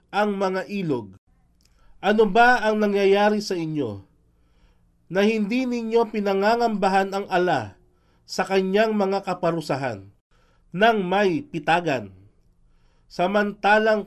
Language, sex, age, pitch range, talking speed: Filipino, male, 40-59, 130-215 Hz, 100 wpm